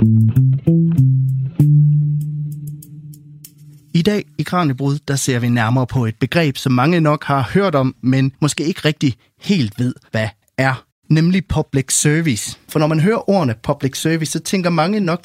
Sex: male